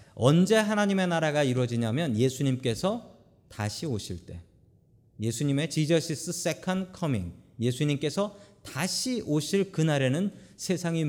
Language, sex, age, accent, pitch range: Korean, male, 40-59, native, 115-175 Hz